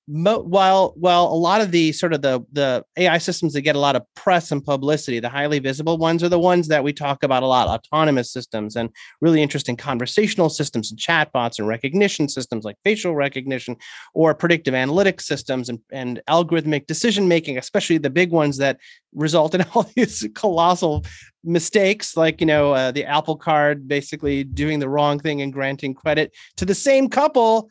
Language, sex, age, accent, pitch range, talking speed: English, male, 30-49, American, 145-185 Hz, 190 wpm